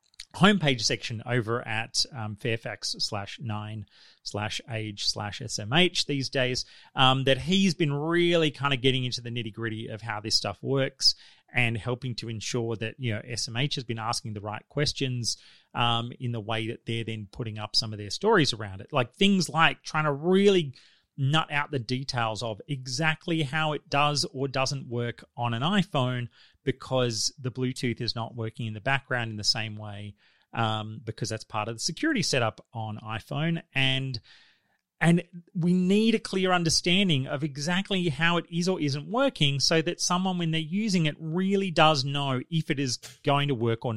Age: 30-49